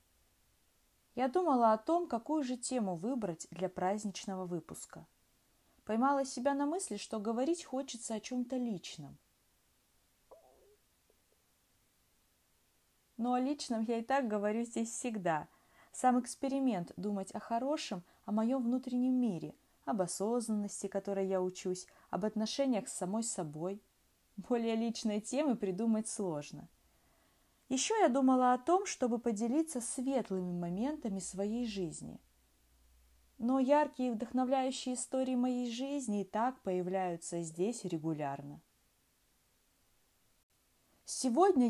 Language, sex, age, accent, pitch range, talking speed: Russian, female, 20-39, native, 185-255 Hz, 110 wpm